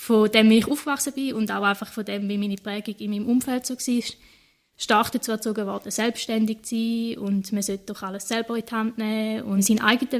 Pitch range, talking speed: 215-245 Hz, 230 wpm